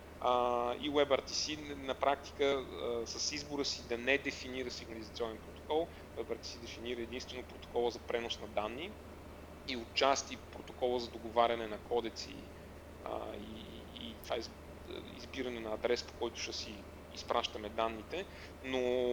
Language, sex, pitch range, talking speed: Bulgarian, male, 90-135 Hz, 120 wpm